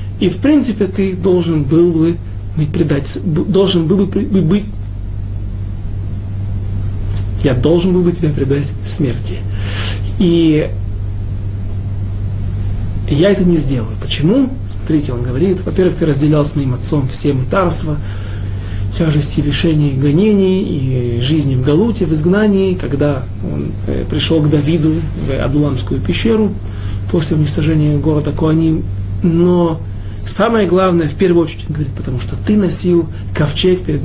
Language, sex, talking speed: Russian, male, 125 wpm